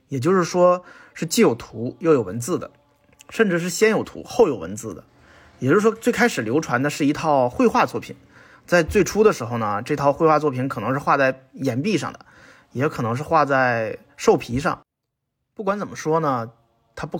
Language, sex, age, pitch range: Chinese, male, 30-49, 130-180 Hz